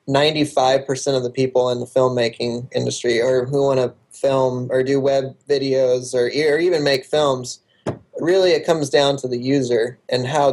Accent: American